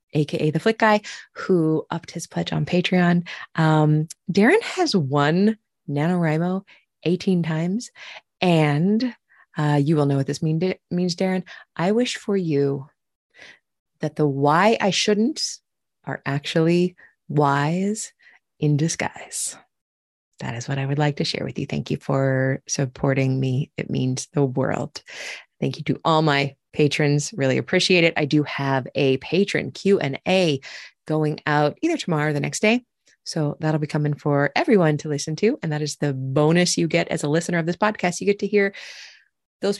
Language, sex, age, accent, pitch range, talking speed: English, female, 20-39, American, 145-195 Hz, 165 wpm